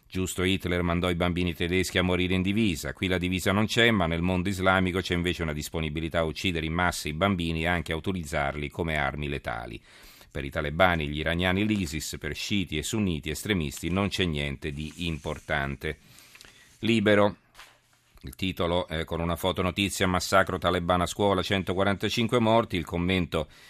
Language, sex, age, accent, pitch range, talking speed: Italian, male, 40-59, native, 80-95 Hz, 170 wpm